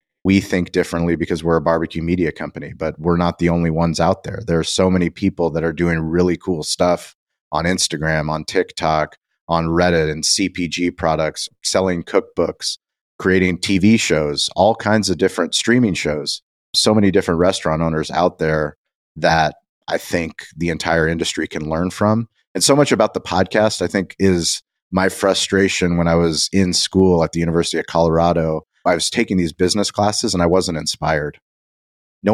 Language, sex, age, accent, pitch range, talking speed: English, male, 30-49, American, 85-95 Hz, 180 wpm